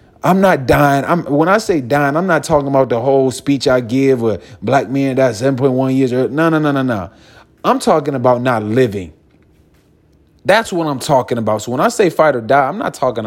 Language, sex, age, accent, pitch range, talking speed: English, male, 30-49, American, 120-180 Hz, 220 wpm